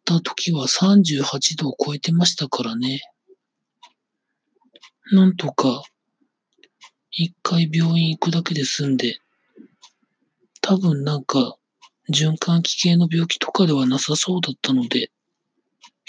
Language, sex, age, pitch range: Japanese, male, 40-59, 140-200 Hz